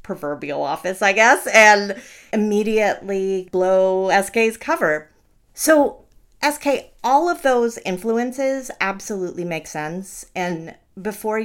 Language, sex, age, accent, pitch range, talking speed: English, female, 30-49, American, 170-230 Hz, 105 wpm